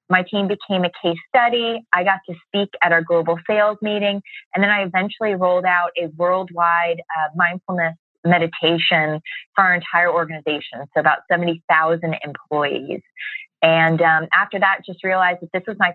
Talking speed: 170 wpm